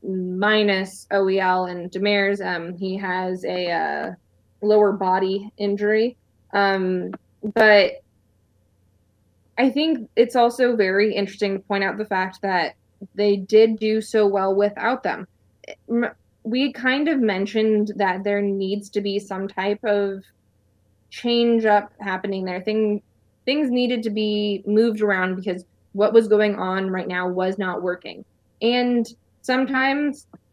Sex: female